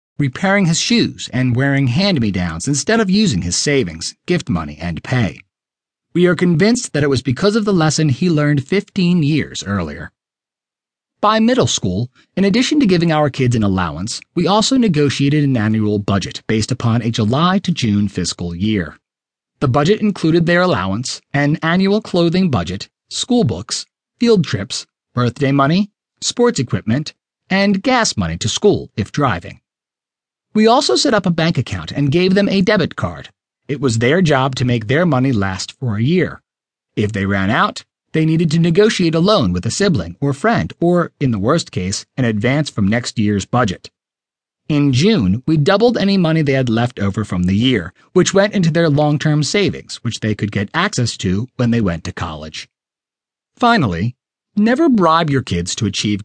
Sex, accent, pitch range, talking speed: male, American, 110-180 Hz, 175 wpm